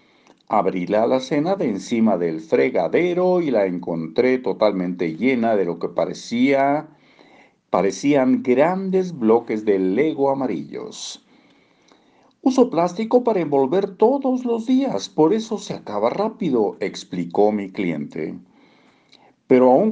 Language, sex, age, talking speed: Spanish, male, 50-69, 120 wpm